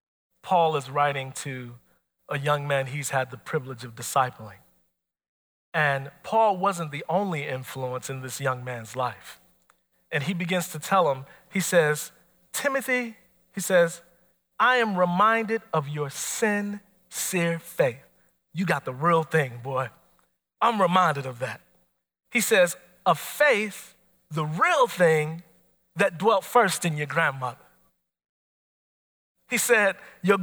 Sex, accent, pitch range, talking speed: male, American, 130-215 Hz, 135 wpm